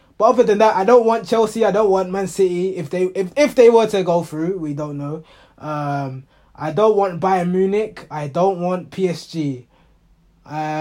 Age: 20-39